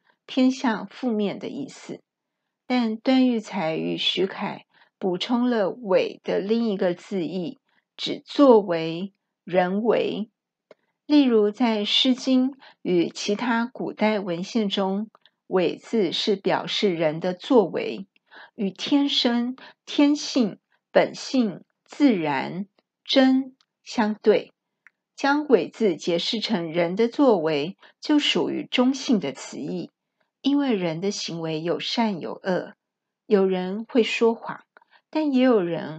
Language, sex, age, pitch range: Chinese, female, 50-69, 195-255 Hz